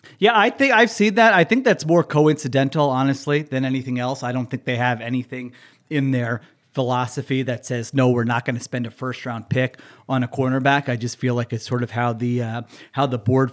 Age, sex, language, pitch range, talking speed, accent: 40-59, male, English, 125-140 Hz, 225 wpm, American